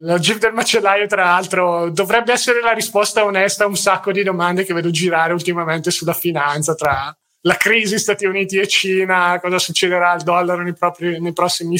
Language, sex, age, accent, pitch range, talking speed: Italian, male, 20-39, native, 170-205 Hz, 185 wpm